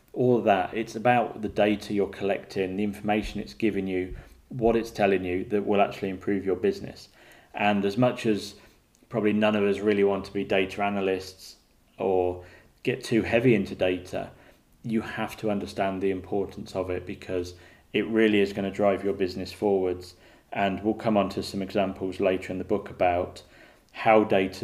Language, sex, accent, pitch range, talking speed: English, male, British, 95-110 Hz, 185 wpm